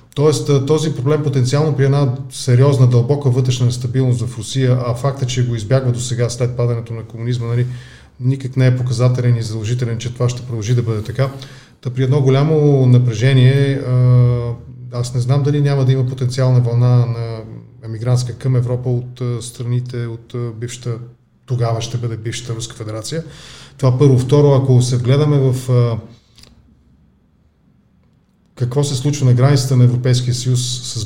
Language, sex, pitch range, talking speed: Bulgarian, male, 120-135 Hz, 160 wpm